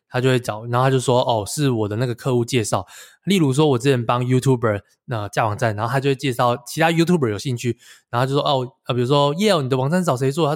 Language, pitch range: Chinese, 115-145 Hz